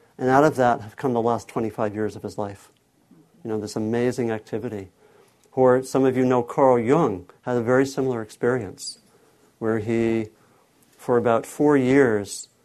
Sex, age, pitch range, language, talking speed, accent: male, 50-69, 120-140 Hz, English, 170 wpm, American